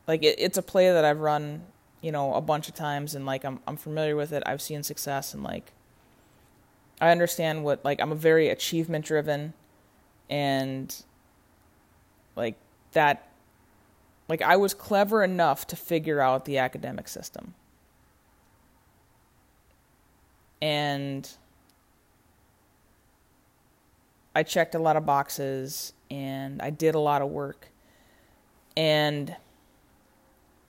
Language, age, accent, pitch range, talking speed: English, 20-39, American, 140-160 Hz, 125 wpm